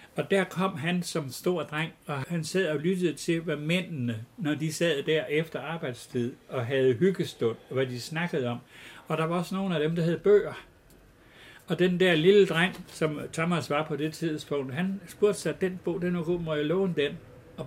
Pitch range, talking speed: 130-175 Hz, 215 wpm